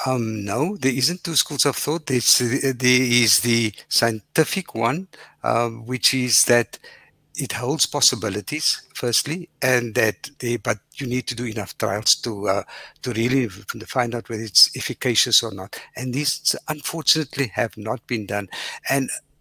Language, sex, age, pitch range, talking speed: English, male, 60-79, 115-140 Hz, 150 wpm